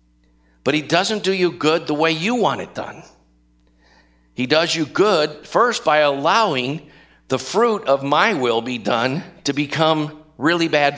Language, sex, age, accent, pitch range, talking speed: English, male, 50-69, American, 115-150 Hz, 165 wpm